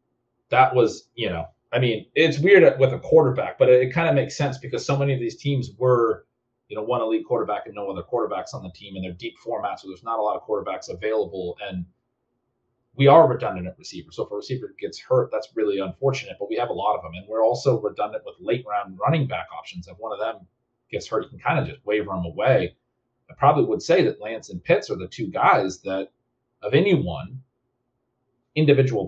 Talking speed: 225 wpm